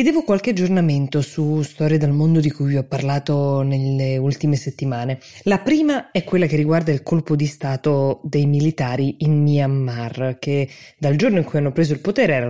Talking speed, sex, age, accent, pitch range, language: 190 wpm, female, 20-39, native, 140-175 Hz, Italian